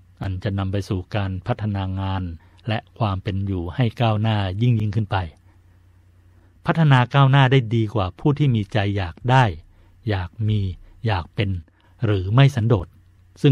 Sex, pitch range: male, 95-120 Hz